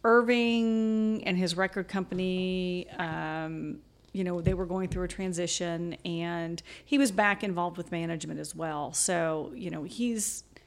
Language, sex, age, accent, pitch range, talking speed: English, female, 40-59, American, 165-205 Hz, 150 wpm